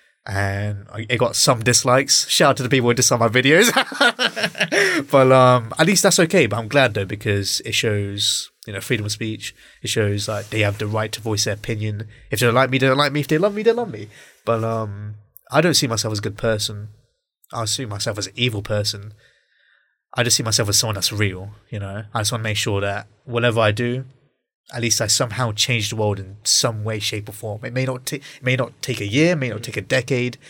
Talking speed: 245 wpm